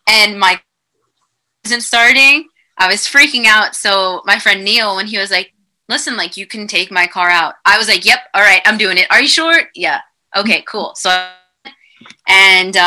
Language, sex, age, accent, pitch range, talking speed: English, female, 20-39, American, 175-225 Hz, 200 wpm